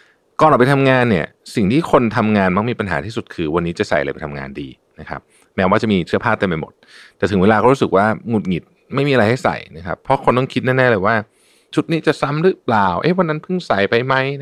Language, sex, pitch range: Thai, male, 90-130 Hz